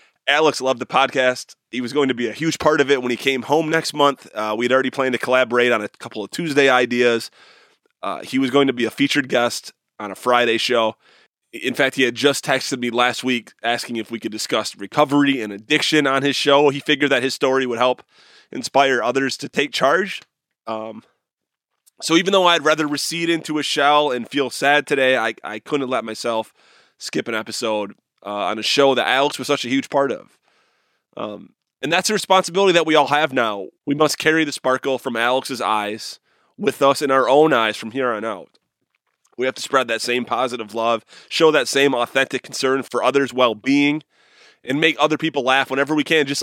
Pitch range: 120-150 Hz